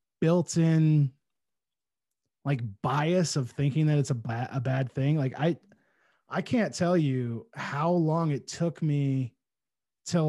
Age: 20-39